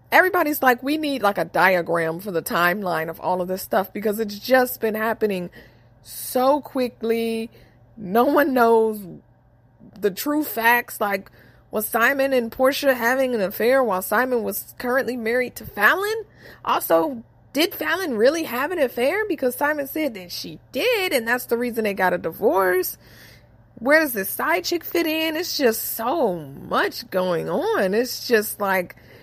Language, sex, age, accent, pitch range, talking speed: English, female, 20-39, American, 190-260 Hz, 165 wpm